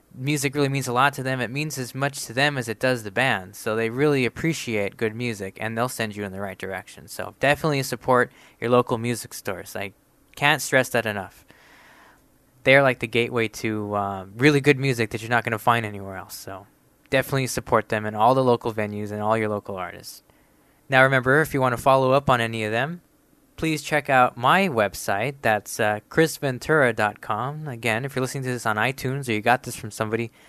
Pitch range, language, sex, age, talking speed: 110-140 Hz, English, male, 20-39, 215 wpm